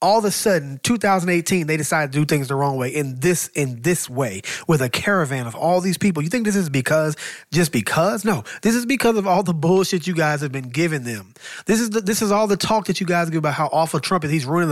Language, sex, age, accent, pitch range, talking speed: English, male, 20-39, American, 150-190 Hz, 265 wpm